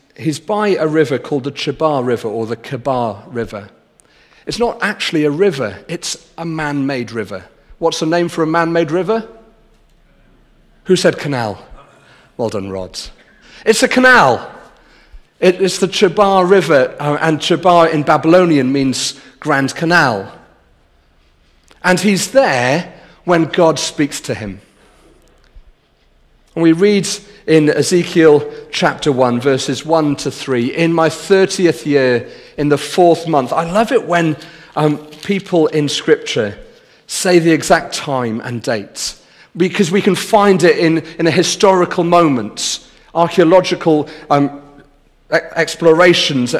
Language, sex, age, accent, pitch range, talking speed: English, male, 40-59, British, 140-180 Hz, 130 wpm